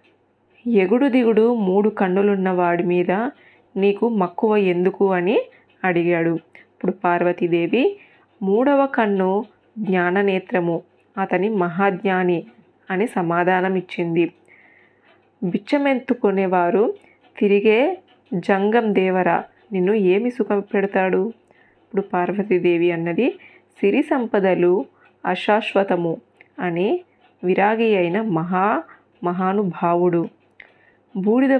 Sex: female